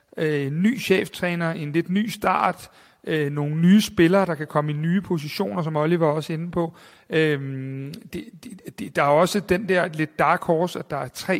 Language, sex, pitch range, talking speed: Danish, male, 150-180 Hz, 175 wpm